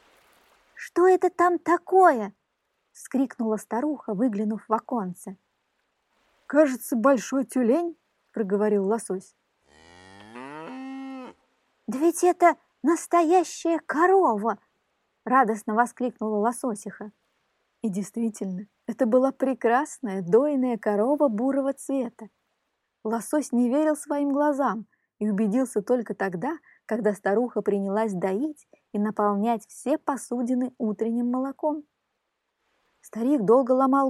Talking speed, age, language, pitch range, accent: 95 wpm, 20-39, Russian, 210-280 Hz, native